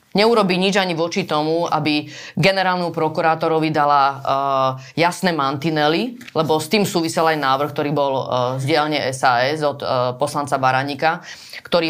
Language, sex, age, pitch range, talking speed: Slovak, female, 30-49, 145-170 Hz, 140 wpm